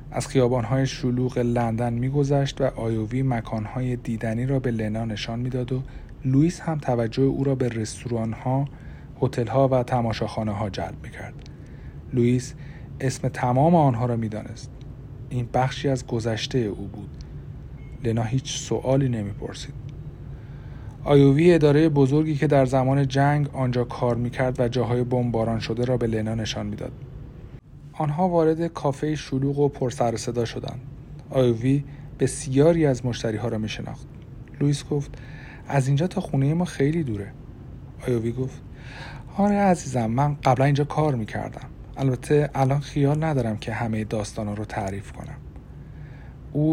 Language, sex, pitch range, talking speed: Persian, male, 120-140 Hz, 140 wpm